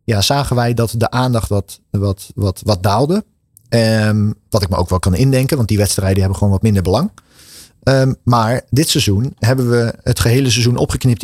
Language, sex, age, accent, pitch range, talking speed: Dutch, male, 40-59, Dutch, 100-130 Hz, 200 wpm